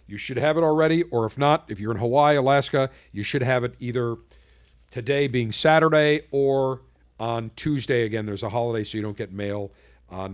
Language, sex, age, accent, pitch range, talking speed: English, male, 50-69, American, 110-155 Hz, 195 wpm